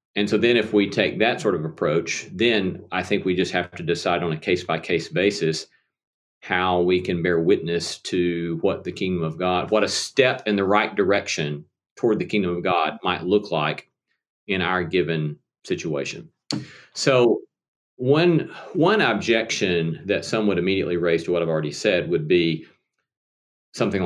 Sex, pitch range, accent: male, 80-100 Hz, American